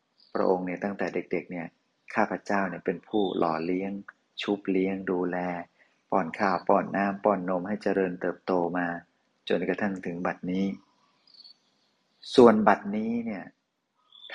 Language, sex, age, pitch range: Thai, male, 30-49, 90-100 Hz